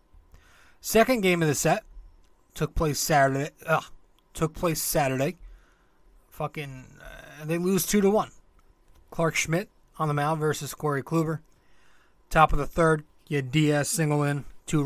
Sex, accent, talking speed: male, American, 150 wpm